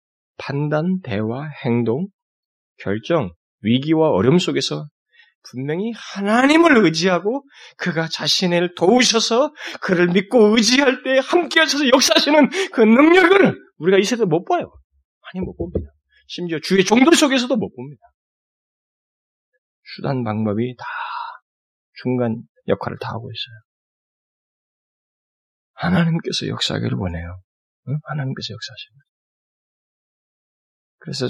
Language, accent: Korean, native